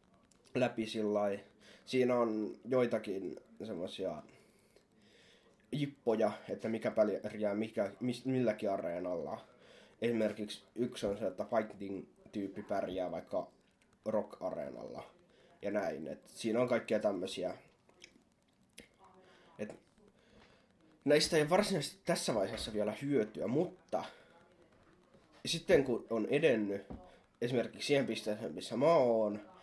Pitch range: 105-135 Hz